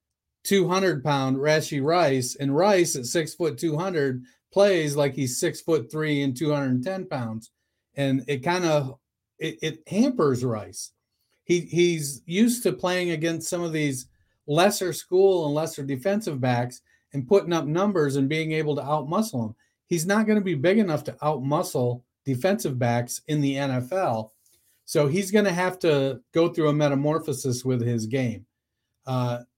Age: 40-59